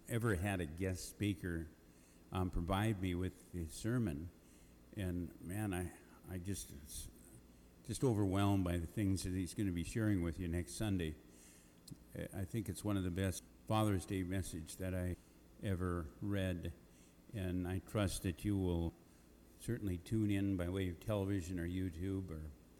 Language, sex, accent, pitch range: English, male, American, 85-100 Hz